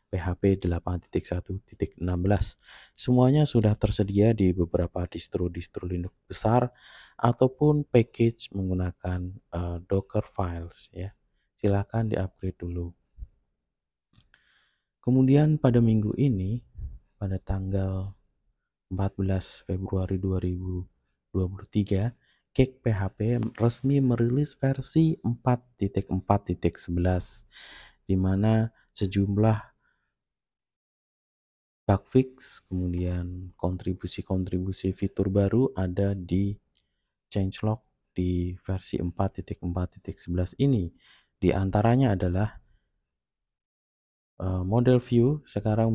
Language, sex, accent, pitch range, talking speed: Indonesian, male, native, 90-110 Hz, 75 wpm